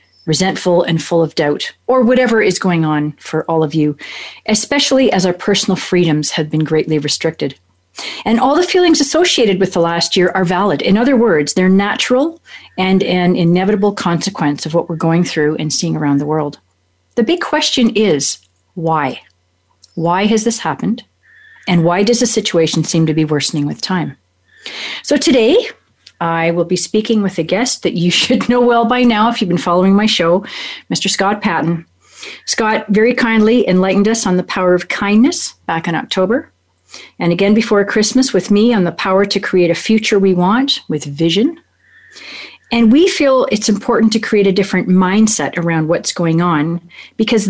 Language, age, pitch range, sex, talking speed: English, 40-59, 165-225 Hz, female, 180 wpm